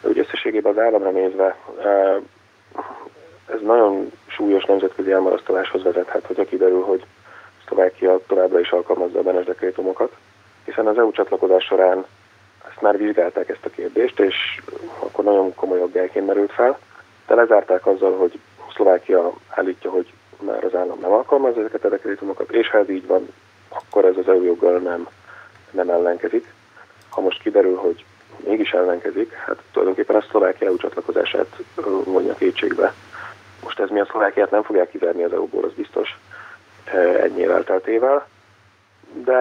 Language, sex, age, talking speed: Hungarian, male, 30-49, 150 wpm